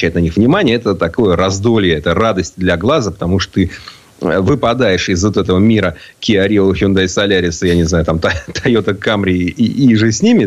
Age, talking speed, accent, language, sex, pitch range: 30-49, 190 wpm, native, Russian, male, 85-110 Hz